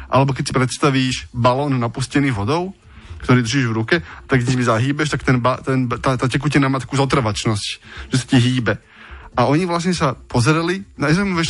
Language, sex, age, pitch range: Slovak, male, 20-39, 115-145 Hz